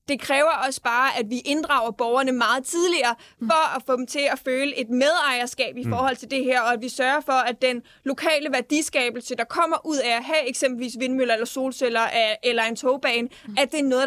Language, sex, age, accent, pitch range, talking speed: Danish, female, 20-39, native, 245-285 Hz, 215 wpm